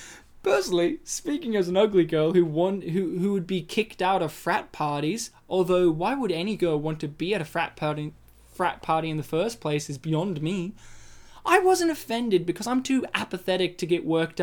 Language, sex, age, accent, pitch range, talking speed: English, male, 10-29, Australian, 160-215 Hz, 200 wpm